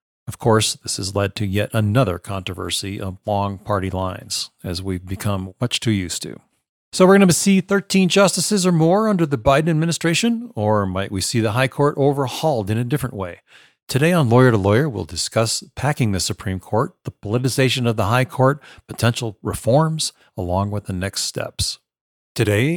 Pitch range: 100-125 Hz